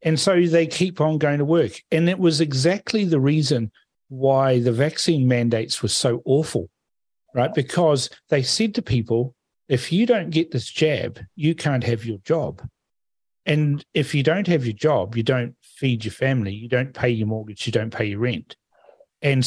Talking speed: 190 wpm